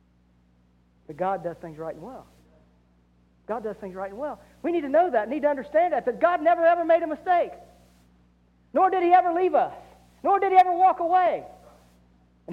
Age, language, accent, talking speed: 50-69, English, American, 195 wpm